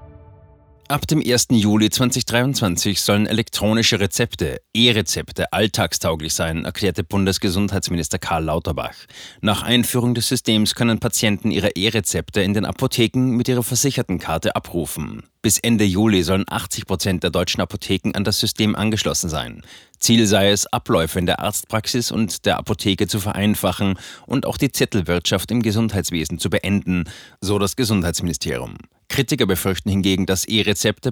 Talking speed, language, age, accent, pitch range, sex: 140 wpm, German, 30-49, German, 95-115 Hz, male